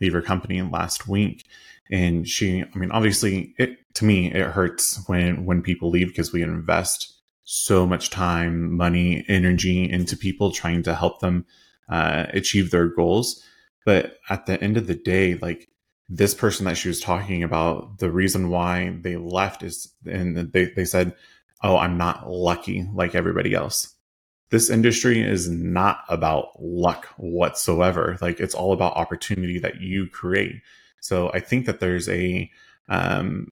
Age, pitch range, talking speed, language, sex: 20-39, 90-100 Hz, 165 wpm, English, male